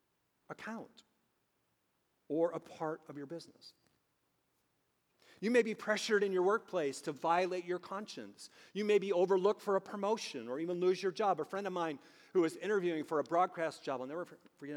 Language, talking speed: English, 180 wpm